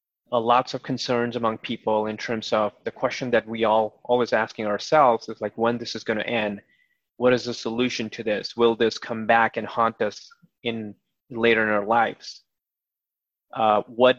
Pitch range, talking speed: 115-130 Hz, 190 wpm